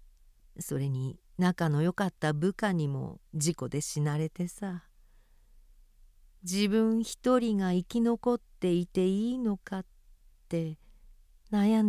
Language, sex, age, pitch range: Japanese, female, 50-69, 155-210 Hz